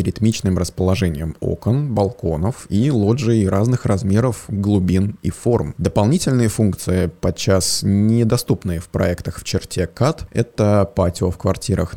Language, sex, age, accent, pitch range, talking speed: Russian, male, 20-39, native, 90-110 Hz, 120 wpm